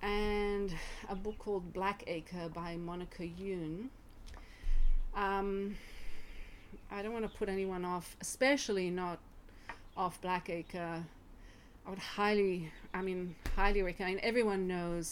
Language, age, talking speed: English, 30-49, 125 wpm